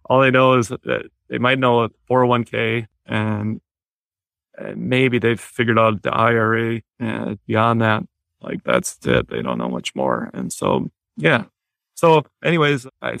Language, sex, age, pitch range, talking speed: English, male, 30-49, 110-120 Hz, 160 wpm